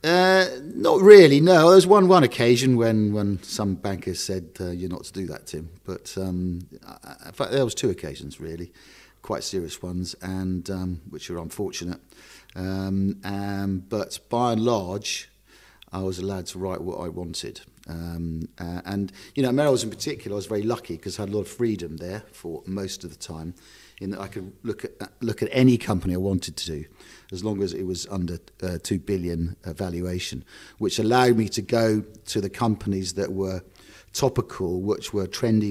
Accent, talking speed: British, 195 wpm